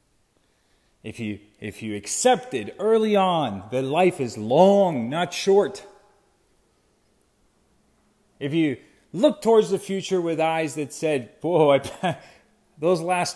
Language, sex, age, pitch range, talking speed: English, male, 40-59, 125-195 Hz, 115 wpm